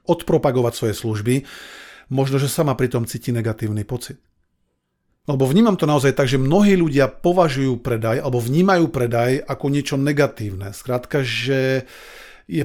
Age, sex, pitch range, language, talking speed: 40-59, male, 120-155 Hz, Slovak, 140 wpm